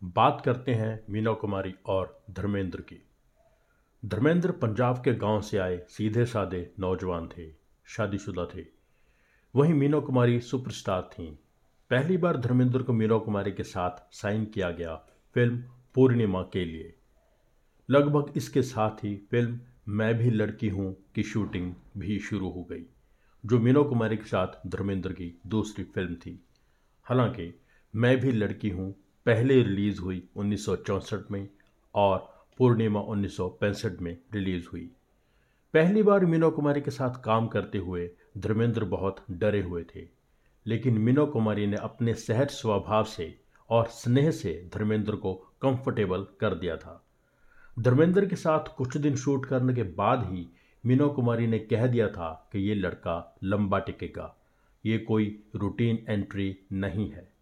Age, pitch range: 50-69, 95-120 Hz